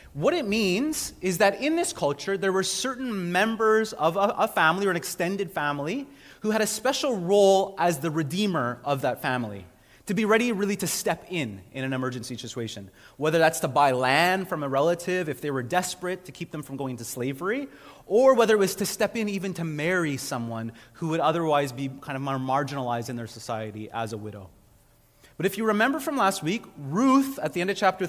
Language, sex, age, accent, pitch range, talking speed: English, male, 30-49, American, 145-205 Hz, 210 wpm